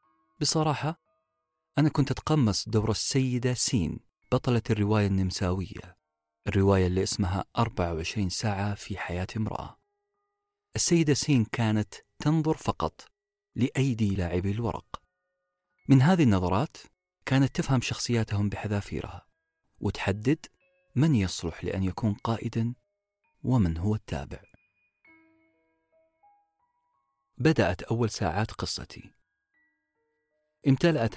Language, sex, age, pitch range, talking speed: Arabic, male, 40-59, 100-150 Hz, 90 wpm